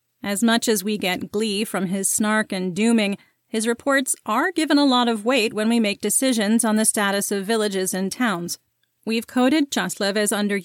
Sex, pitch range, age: female, 200-240 Hz, 30-49